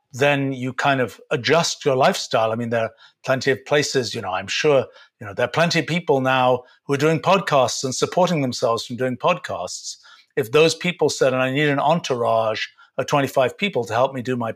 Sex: male